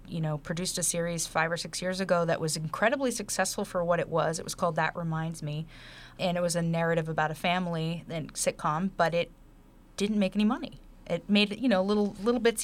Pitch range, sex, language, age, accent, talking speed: 155-180 Hz, female, English, 30-49, American, 225 wpm